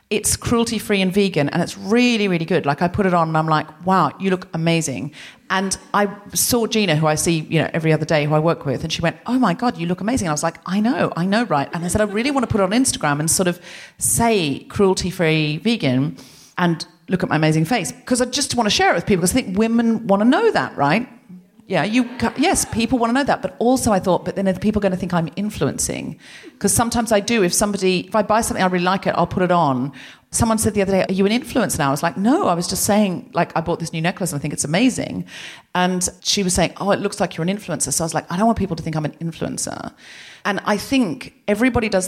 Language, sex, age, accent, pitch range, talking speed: English, female, 40-59, British, 155-210 Hz, 280 wpm